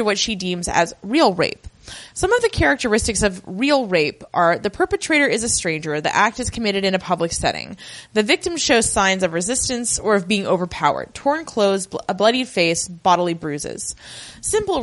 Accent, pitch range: American, 180-255 Hz